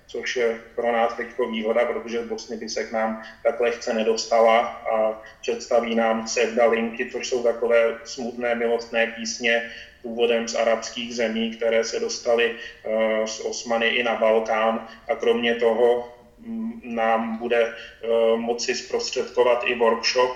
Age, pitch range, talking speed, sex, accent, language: 30-49, 115-120 Hz, 140 wpm, male, native, Czech